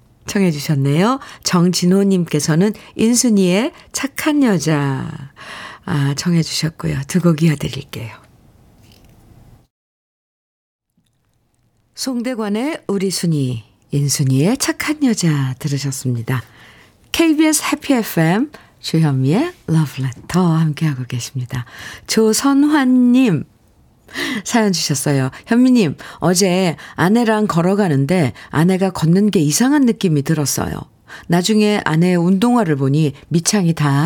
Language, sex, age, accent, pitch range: Korean, female, 50-69, native, 150-220 Hz